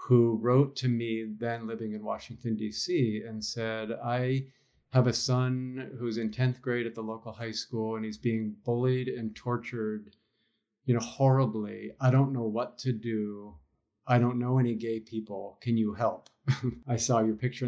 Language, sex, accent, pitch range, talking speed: English, male, American, 110-120 Hz, 175 wpm